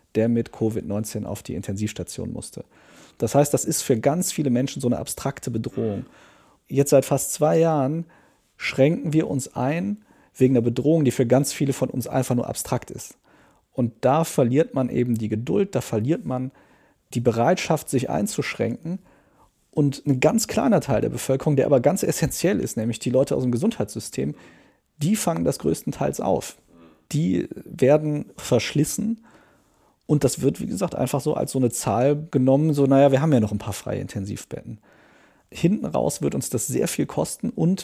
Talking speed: 180 wpm